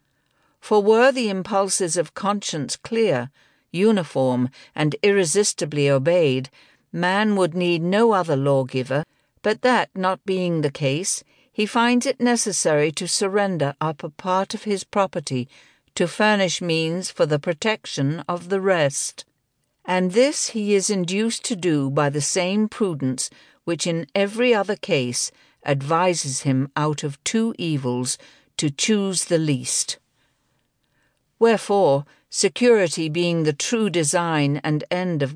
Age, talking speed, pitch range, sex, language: 60-79, 135 wpm, 150-205 Hz, female, English